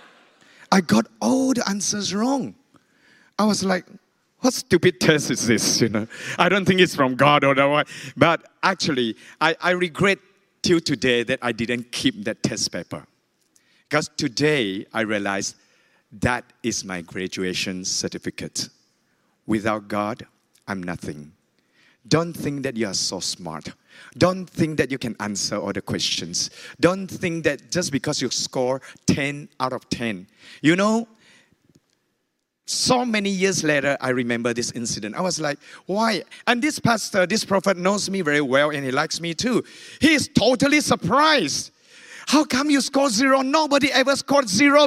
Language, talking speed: English, 160 wpm